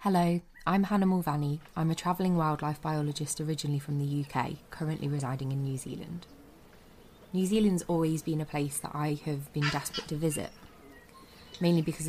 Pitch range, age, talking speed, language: 150-175 Hz, 20-39, 165 wpm, English